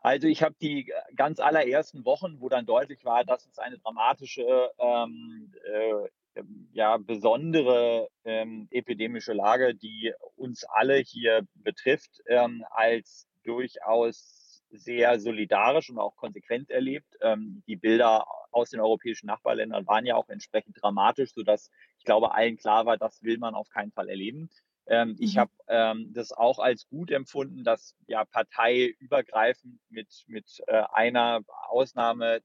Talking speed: 140 wpm